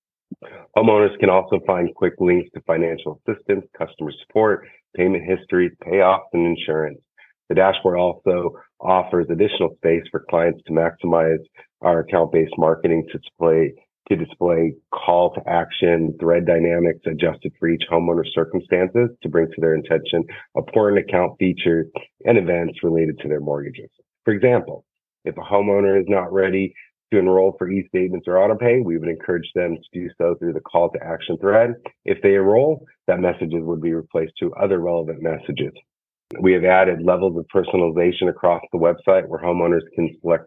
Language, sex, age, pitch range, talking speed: English, male, 40-59, 80-95 Hz, 155 wpm